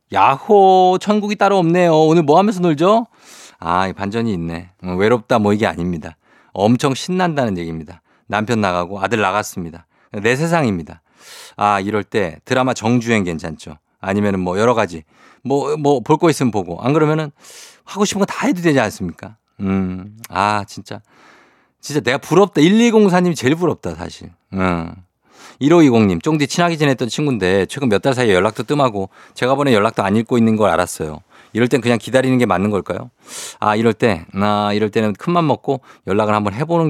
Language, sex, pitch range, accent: Korean, male, 95-135 Hz, native